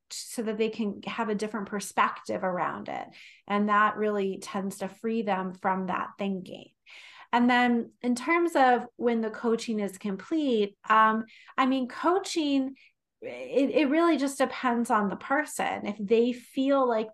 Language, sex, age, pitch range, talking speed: English, female, 30-49, 205-235 Hz, 160 wpm